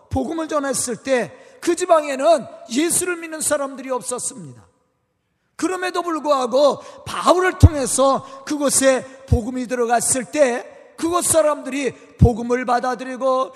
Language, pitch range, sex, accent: Korean, 240-310 Hz, male, native